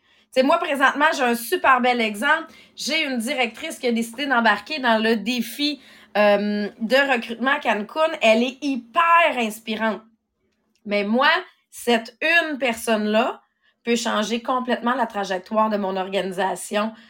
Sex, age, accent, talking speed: female, 30-49, Canadian, 140 wpm